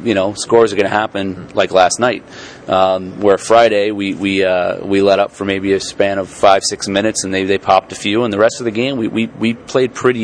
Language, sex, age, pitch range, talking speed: English, male, 30-49, 95-105 Hz, 260 wpm